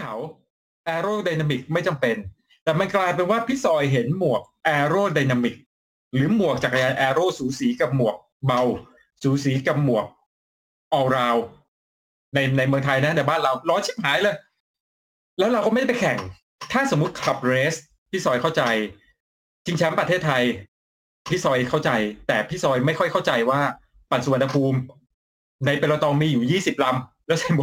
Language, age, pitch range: Thai, 20-39, 120-170 Hz